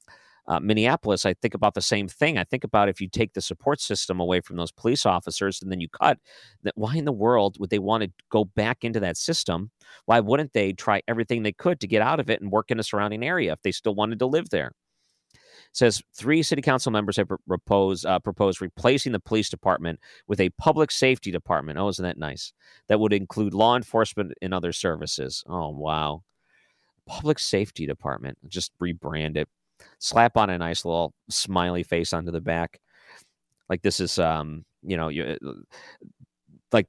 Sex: male